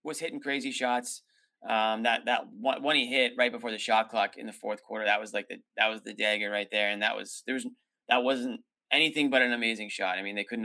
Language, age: English, 20-39